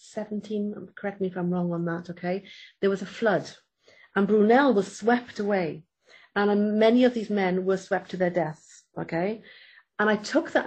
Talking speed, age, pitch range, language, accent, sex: 185 wpm, 40-59, 180-220 Hz, English, British, female